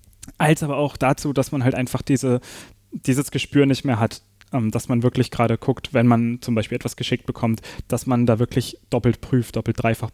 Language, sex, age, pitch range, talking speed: German, male, 10-29, 115-140 Hz, 200 wpm